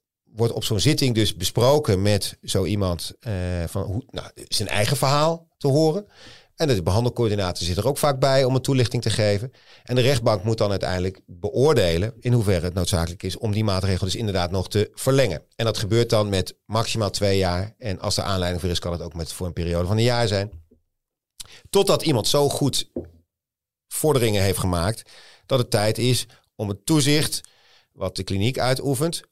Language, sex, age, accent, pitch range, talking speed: Dutch, male, 40-59, Dutch, 100-125 Hz, 190 wpm